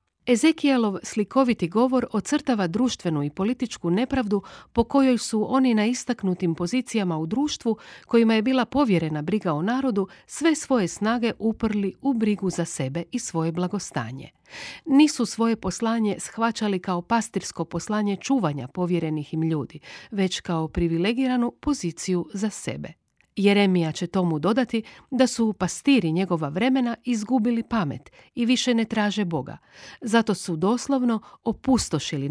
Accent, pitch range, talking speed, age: native, 175-245 Hz, 135 wpm, 50-69